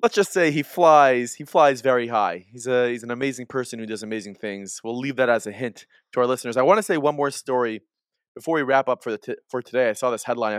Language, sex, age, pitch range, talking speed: English, male, 20-39, 115-145 Hz, 270 wpm